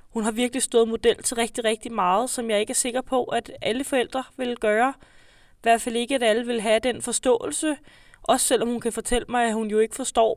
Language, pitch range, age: Danish, 225-255 Hz, 20-39